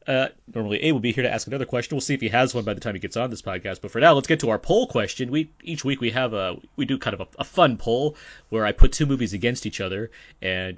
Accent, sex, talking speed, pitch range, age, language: American, male, 310 wpm, 95-125 Hz, 30-49, English